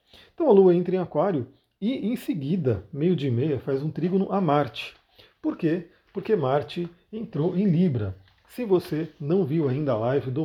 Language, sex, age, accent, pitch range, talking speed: Portuguese, male, 40-59, Brazilian, 130-170 Hz, 185 wpm